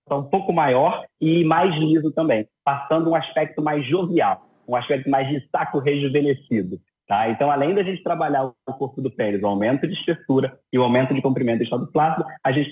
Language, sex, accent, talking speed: Portuguese, male, Brazilian, 200 wpm